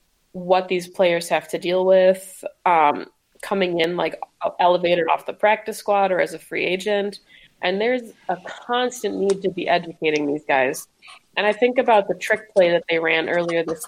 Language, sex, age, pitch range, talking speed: English, female, 20-39, 170-195 Hz, 185 wpm